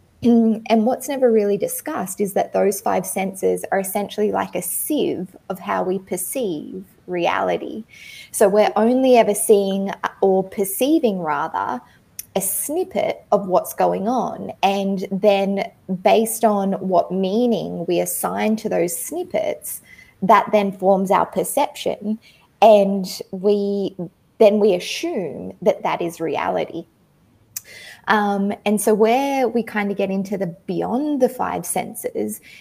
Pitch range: 195-225 Hz